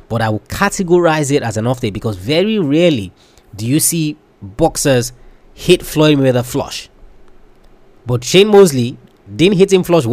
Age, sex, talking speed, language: 20-39, male, 160 wpm, English